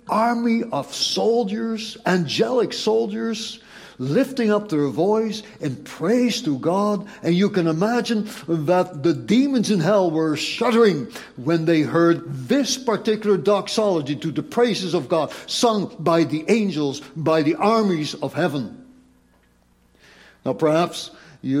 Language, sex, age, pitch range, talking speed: English, male, 60-79, 140-205 Hz, 130 wpm